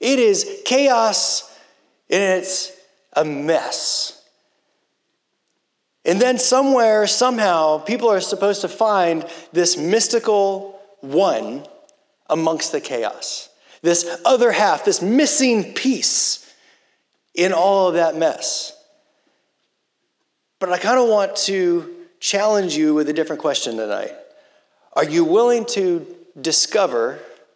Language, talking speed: English, 110 wpm